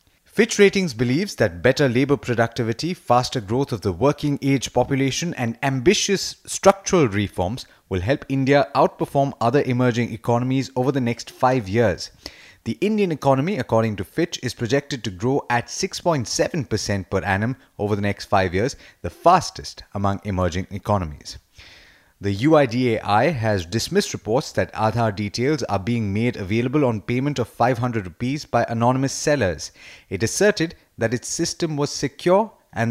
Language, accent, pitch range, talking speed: English, Indian, 110-145 Hz, 150 wpm